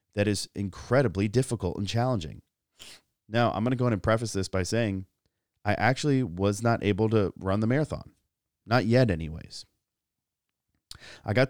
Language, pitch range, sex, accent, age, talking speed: English, 90-115 Hz, male, American, 30-49, 160 wpm